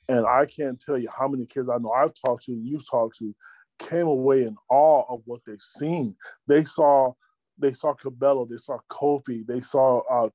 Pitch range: 125-155 Hz